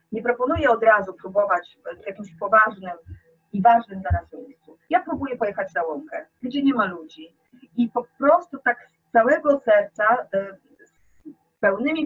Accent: native